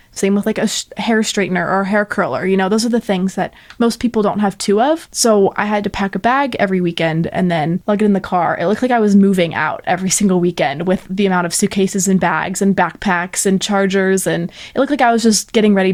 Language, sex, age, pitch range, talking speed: English, female, 20-39, 190-220 Hz, 265 wpm